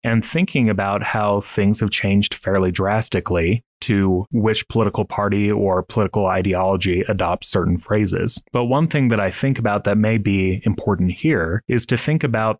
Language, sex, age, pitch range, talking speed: English, male, 30-49, 95-110 Hz, 165 wpm